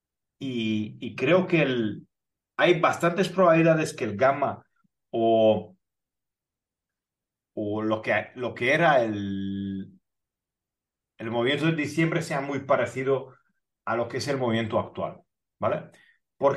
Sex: male